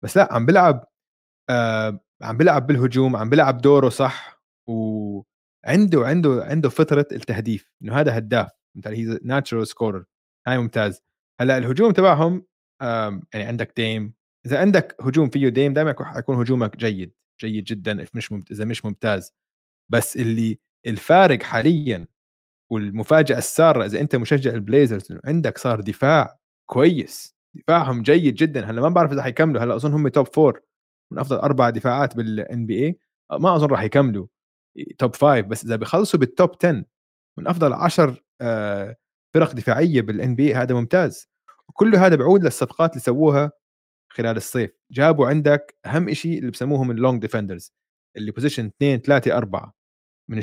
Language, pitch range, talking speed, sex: Arabic, 115-150 Hz, 150 wpm, male